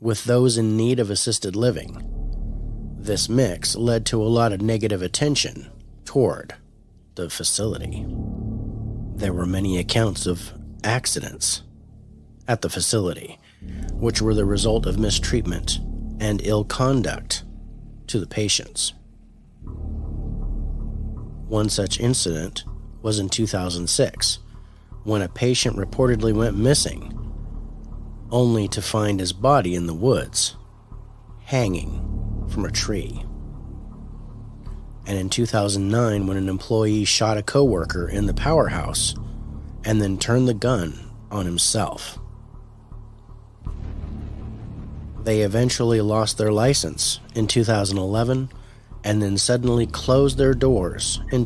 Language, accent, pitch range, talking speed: English, American, 95-115 Hz, 115 wpm